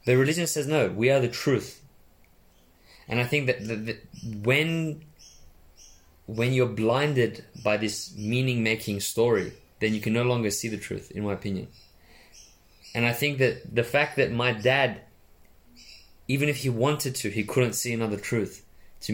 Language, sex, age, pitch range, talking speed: English, male, 20-39, 105-150 Hz, 165 wpm